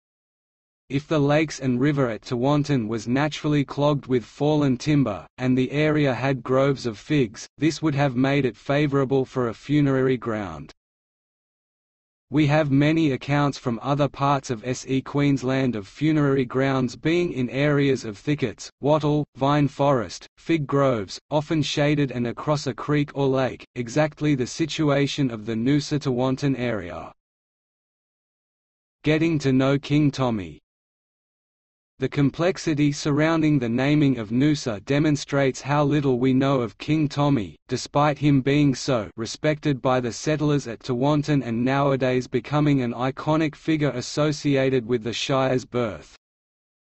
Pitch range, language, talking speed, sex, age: 125-150 Hz, English, 140 wpm, male, 30-49